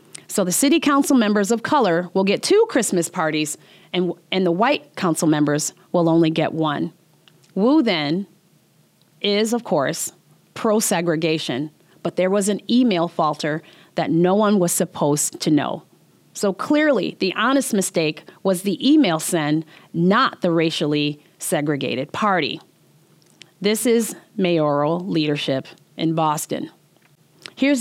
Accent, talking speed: American, 135 wpm